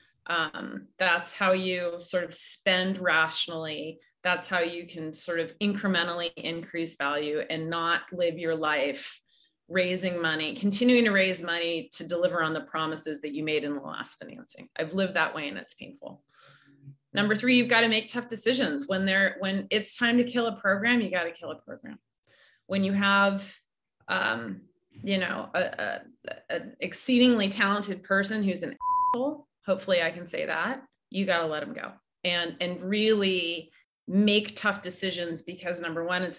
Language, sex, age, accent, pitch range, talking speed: English, female, 30-49, American, 165-200 Hz, 170 wpm